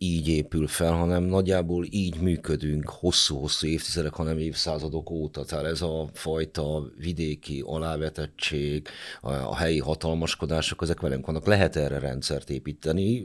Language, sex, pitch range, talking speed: Hungarian, male, 75-90 Hz, 125 wpm